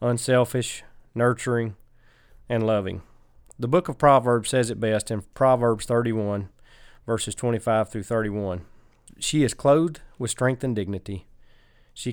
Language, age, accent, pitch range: English, 30-49, American, 110-130 Hz